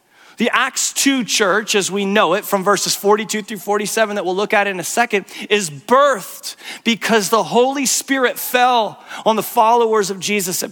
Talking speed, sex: 185 wpm, male